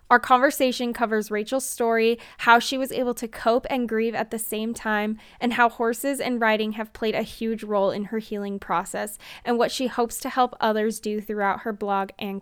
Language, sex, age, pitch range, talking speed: English, female, 10-29, 215-260 Hz, 210 wpm